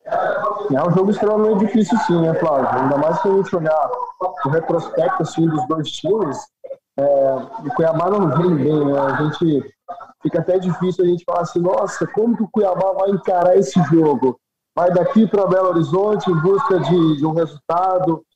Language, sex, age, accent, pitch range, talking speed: Portuguese, male, 20-39, Brazilian, 160-200 Hz, 185 wpm